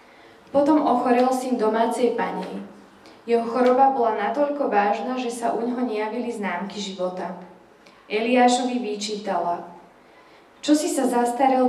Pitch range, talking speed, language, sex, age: 210-250 Hz, 120 wpm, Slovak, female, 10-29